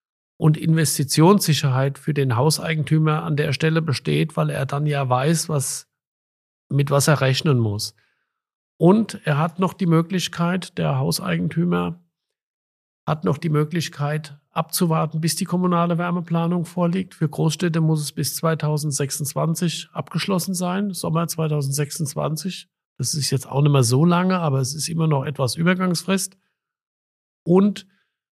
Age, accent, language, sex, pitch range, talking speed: 50-69, German, German, male, 140-170 Hz, 135 wpm